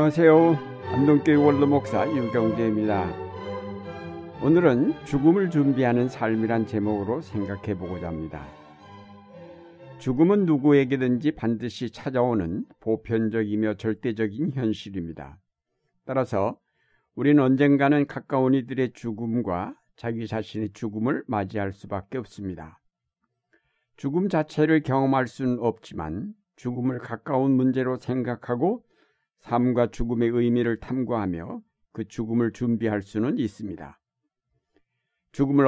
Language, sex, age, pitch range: Korean, male, 60-79, 110-140 Hz